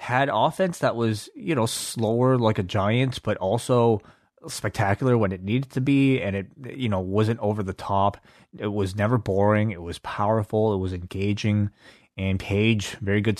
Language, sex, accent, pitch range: English, male, American, 100-115 Hz